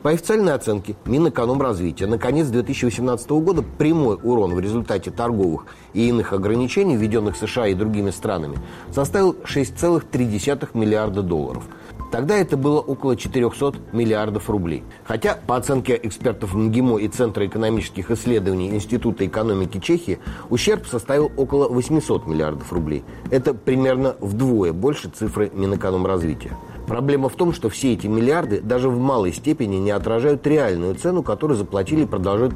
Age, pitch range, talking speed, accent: 30-49, 100-130 Hz, 140 wpm, native